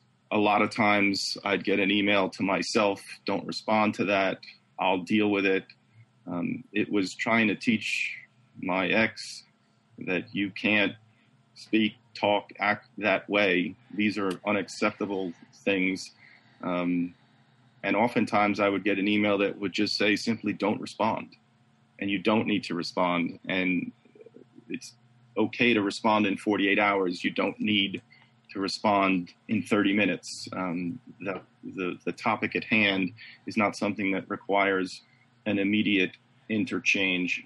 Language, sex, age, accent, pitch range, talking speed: English, male, 30-49, American, 95-115 Hz, 145 wpm